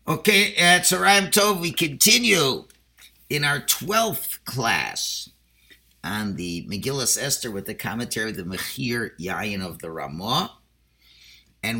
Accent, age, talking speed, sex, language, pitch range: American, 50-69, 125 wpm, male, English, 95-125 Hz